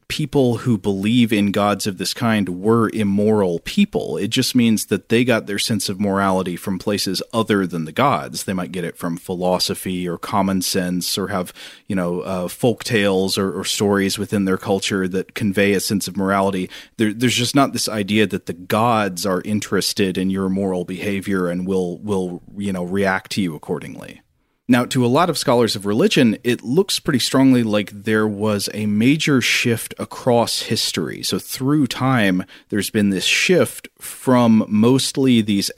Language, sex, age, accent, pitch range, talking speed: English, male, 30-49, American, 95-110 Hz, 180 wpm